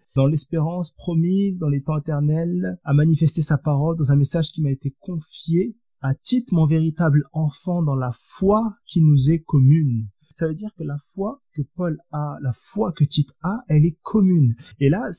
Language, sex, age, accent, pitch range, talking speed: French, male, 20-39, French, 140-175 Hz, 195 wpm